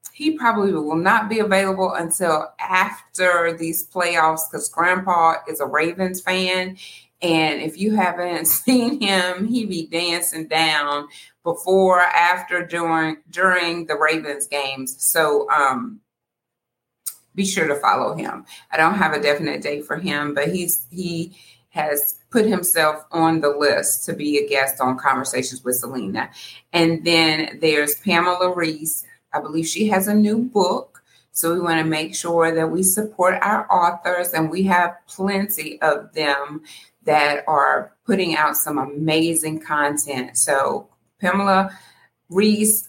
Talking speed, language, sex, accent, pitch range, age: 145 wpm, English, female, American, 150-185 Hz, 30-49